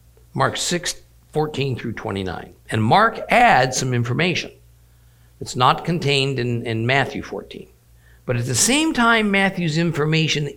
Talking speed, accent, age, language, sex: 125 wpm, American, 50-69, English, male